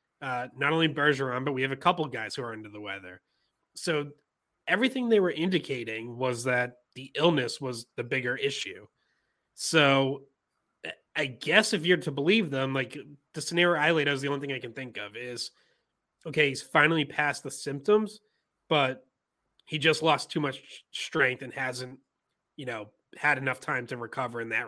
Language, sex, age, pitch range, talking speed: English, male, 30-49, 125-155 Hz, 180 wpm